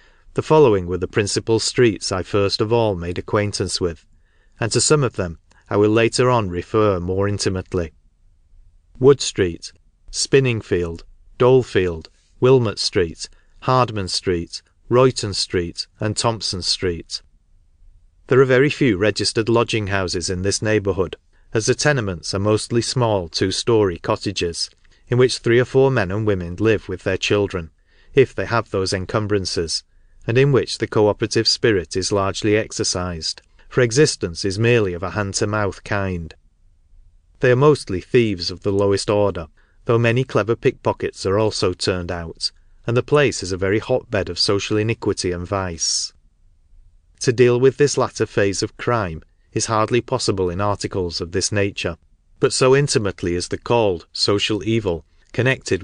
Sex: male